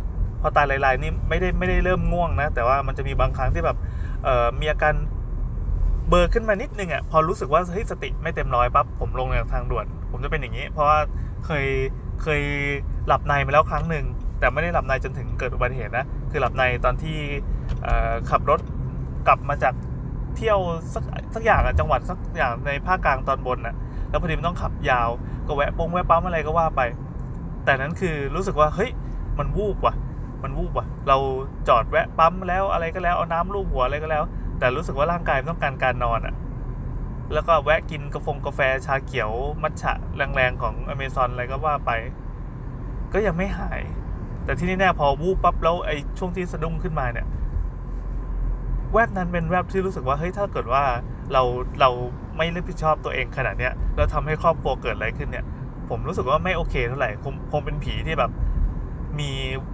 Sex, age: male, 20-39